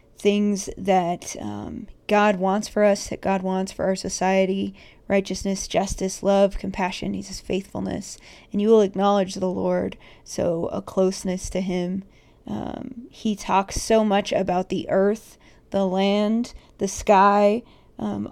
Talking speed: 140 wpm